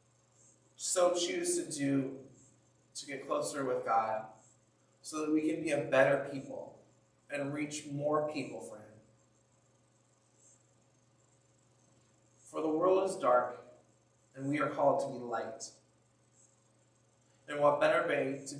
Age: 30-49